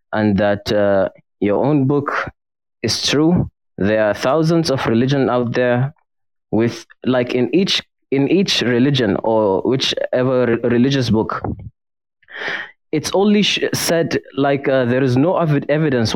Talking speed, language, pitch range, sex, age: 140 wpm, English, 110-130 Hz, male, 20-39